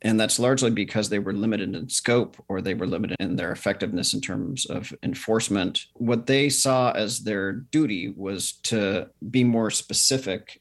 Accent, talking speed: American, 175 wpm